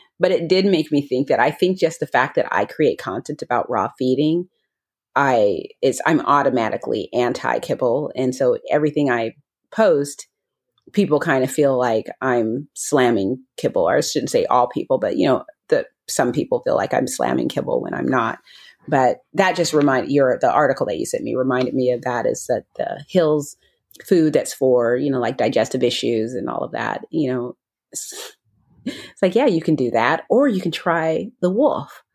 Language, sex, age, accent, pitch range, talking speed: English, female, 30-49, American, 140-200 Hz, 190 wpm